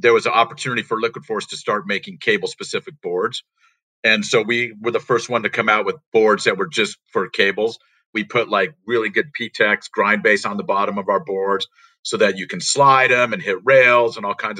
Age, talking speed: 50-69, 230 wpm